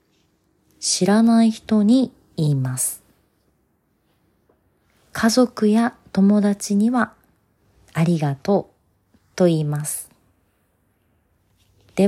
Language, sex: Japanese, female